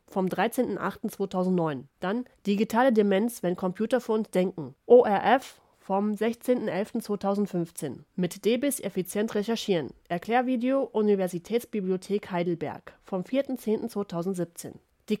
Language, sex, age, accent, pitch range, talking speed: German, female, 30-49, German, 180-225 Hz, 90 wpm